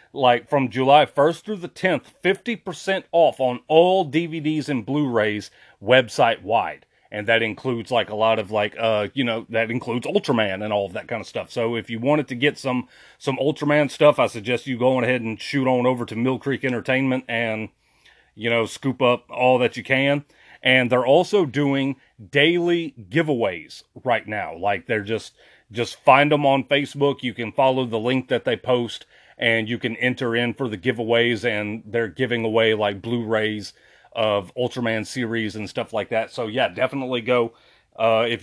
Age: 30-49